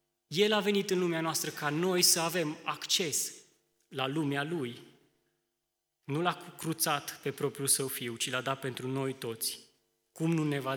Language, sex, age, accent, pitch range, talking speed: Romanian, male, 20-39, native, 120-145 Hz, 175 wpm